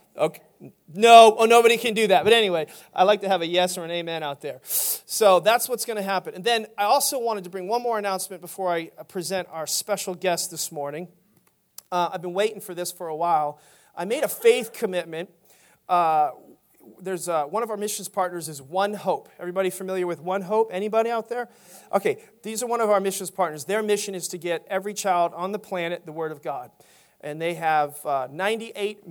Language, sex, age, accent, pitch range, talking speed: English, male, 40-59, American, 160-205 Hz, 215 wpm